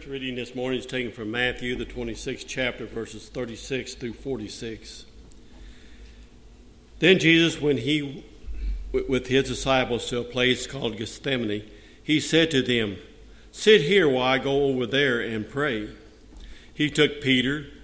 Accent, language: American, English